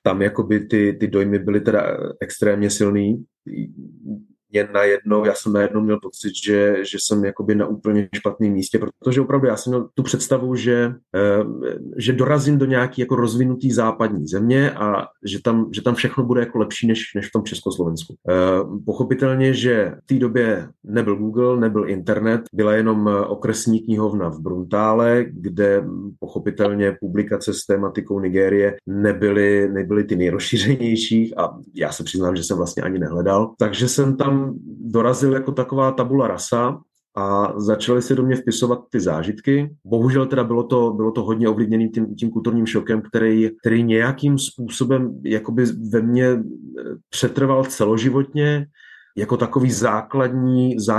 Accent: native